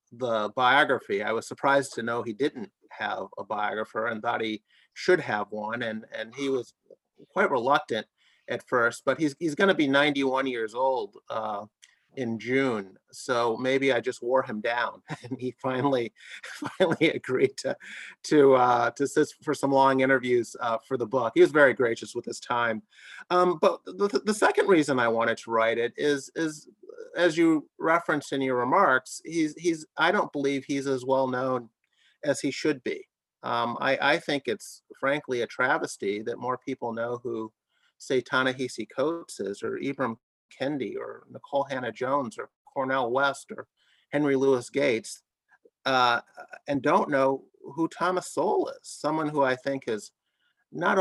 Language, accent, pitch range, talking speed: English, American, 120-150 Hz, 175 wpm